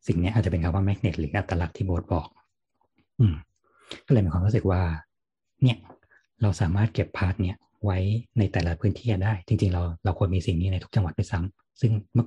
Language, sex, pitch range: Thai, male, 85-110 Hz